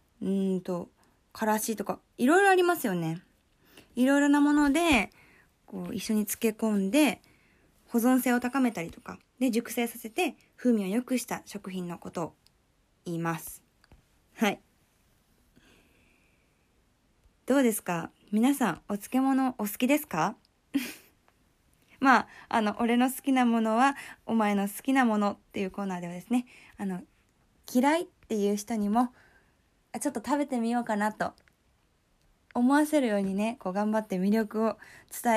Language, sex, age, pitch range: Japanese, female, 20-39, 195-255 Hz